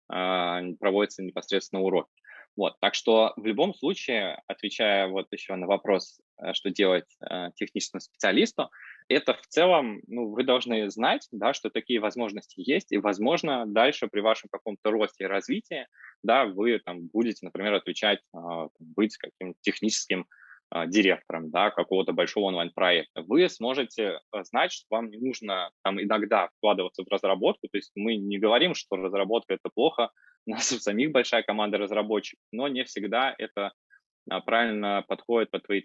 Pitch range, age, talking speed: 100-115 Hz, 20-39, 150 wpm